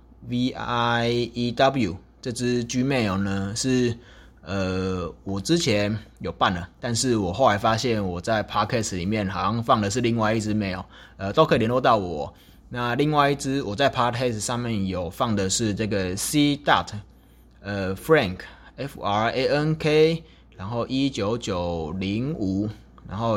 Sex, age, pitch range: male, 20-39, 95-125 Hz